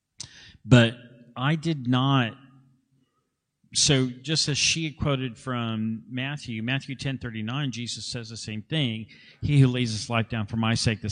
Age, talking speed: 50-69, 155 wpm